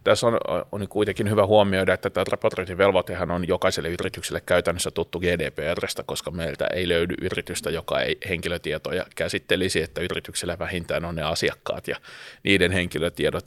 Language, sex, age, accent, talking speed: Finnish, male, 30-49, native, 150 wpm